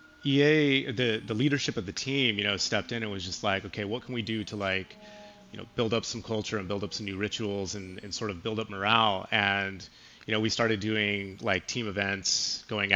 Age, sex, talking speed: 30-49, male, 235 wpm